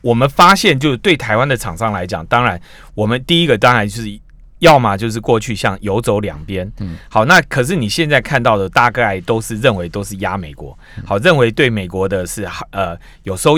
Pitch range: 100-150 Hz